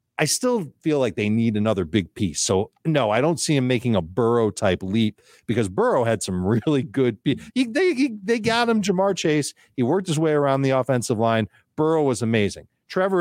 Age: 40-59